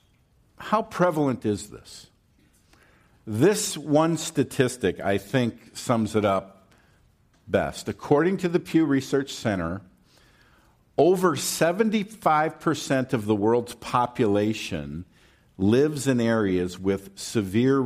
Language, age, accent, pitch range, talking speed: English, 50-69, American, 90-135 Hz, 100 wpm